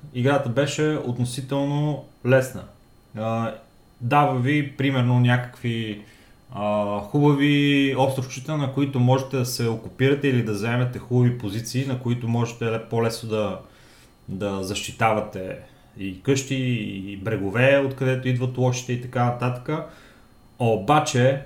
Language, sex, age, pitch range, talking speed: Bulgarian, male, 30-49, 115-135 Hz, 115 wpm